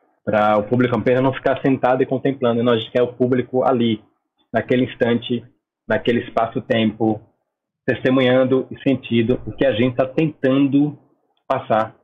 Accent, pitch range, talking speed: Brazilian, 110-140 Hz, 135 wpm